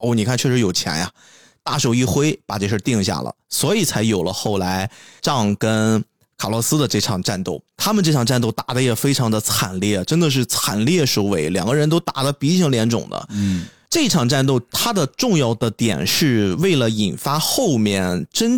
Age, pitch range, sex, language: 20-39, 110-155 Hz, male, Chinese